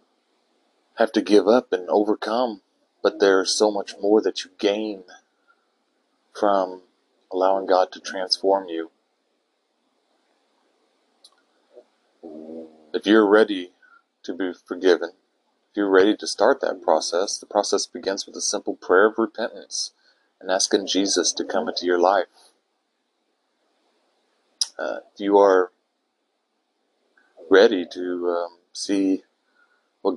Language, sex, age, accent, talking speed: English, male, 40-59, American, 115 wpm